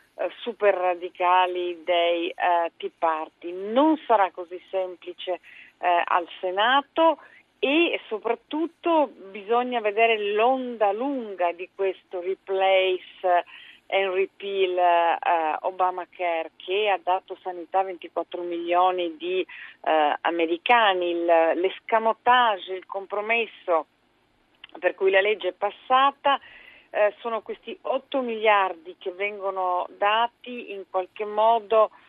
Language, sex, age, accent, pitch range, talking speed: Italian, female, 40-59, native, 180-230 Hz, 95 wpm